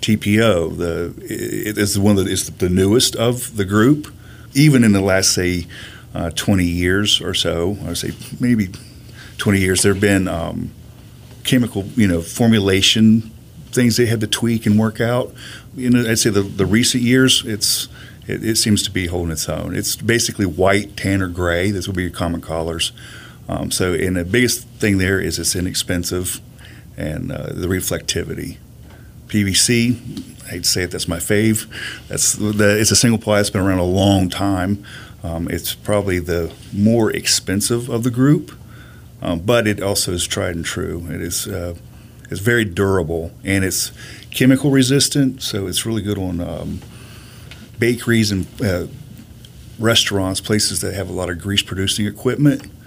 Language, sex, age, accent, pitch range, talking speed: English, male, 40-59, American, 95-115 Hz, 175 wpm